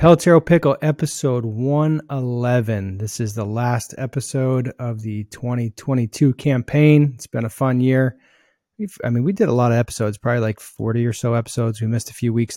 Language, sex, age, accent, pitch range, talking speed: English, male, 30-49, American, 110-135 Hz, 180 wpm